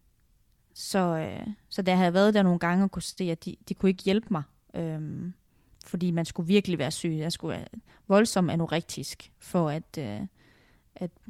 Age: 20-39